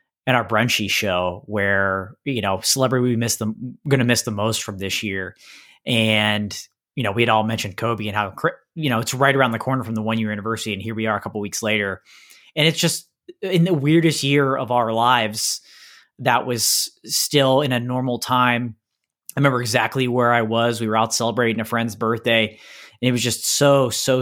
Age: 20-39